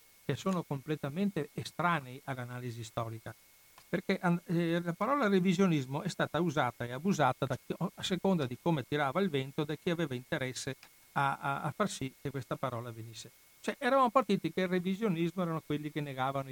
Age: 60-79